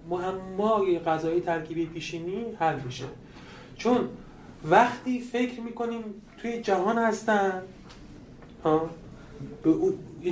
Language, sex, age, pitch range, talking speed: Persian, male, 30-49, 170-220 Hz, 100 wpm